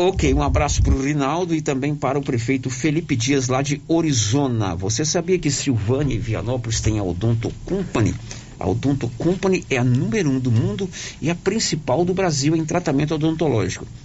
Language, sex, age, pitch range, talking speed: Portuguese, male, 50-69, 110-135 Hz, 185 wpm